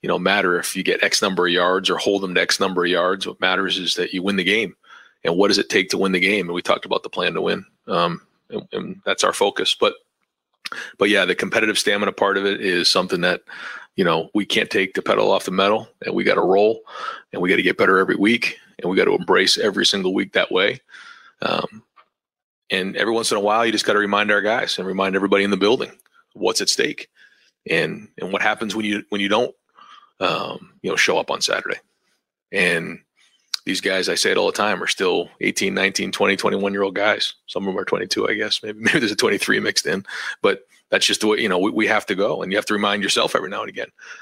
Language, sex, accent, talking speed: English, male, American, 250 wpm